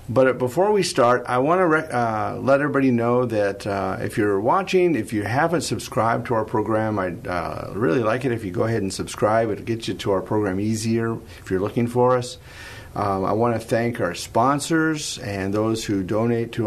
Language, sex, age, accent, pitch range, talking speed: English, male, 50-69, American, 100-120 Hz, 210 wpm